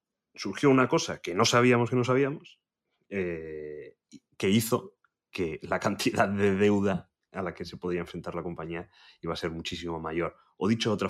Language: Spanish